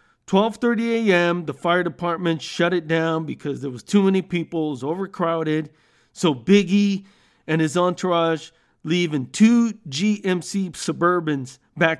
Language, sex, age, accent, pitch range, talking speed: English, male, 40-59, American, 150-190 Hz, 130 wpm